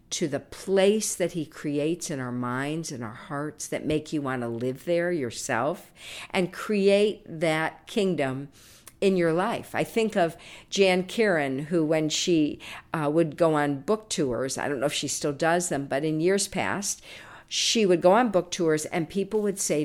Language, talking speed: English, 190 wpm